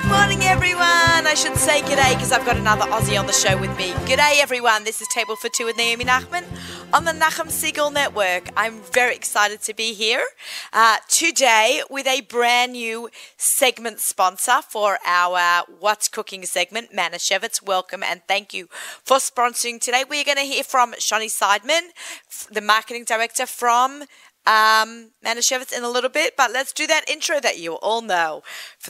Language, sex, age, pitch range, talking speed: English, female, 30-49, 205-270 Hz, 180 wpm